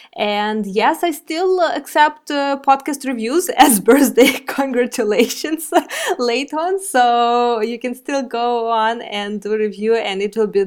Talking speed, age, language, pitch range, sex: 145 wpm, 20-39, English, 205-275 Hz, female